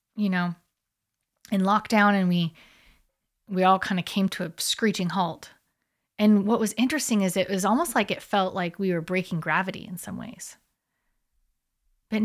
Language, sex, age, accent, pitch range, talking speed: English, female, 30-49, American, 185-230 Hz, 170 wpm